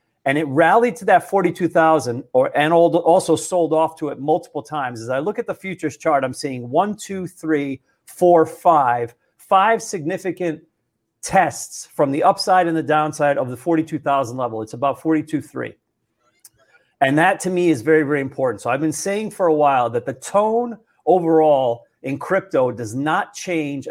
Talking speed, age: 175 wpm, 40-59